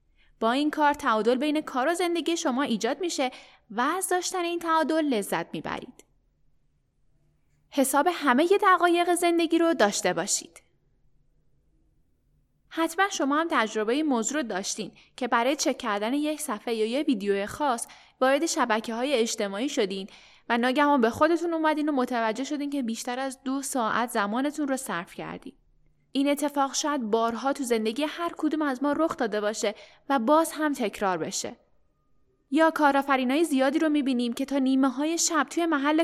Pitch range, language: 220-305 Hz, Persian